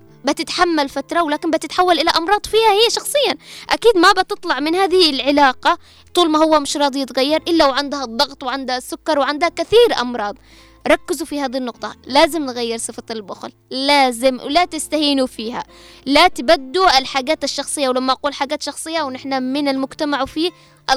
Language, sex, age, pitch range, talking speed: Arabic, female, 20-39, 260-330 Hz, 150 wpm